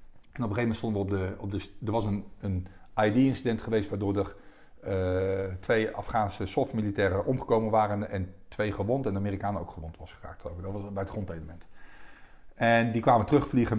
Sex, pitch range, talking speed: male, 100-115 Hz, 200 wpm